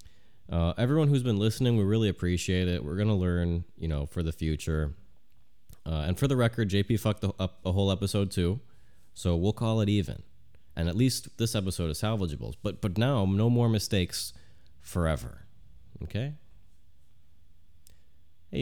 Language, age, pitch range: English, 30-49, 80-110 Hz